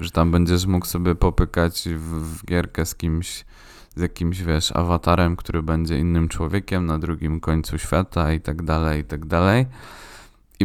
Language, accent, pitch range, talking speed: Polish, native, 80-95 Hz, 170 wpm